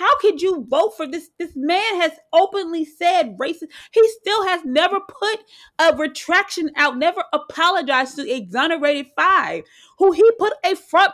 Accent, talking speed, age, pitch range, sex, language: American, 160 wpm, 30-49, 260-360 Hz, female, English